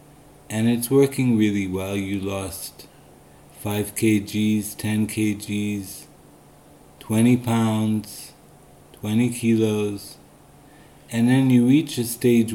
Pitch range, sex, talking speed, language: 95-115 Hz, male, 100 wpm, English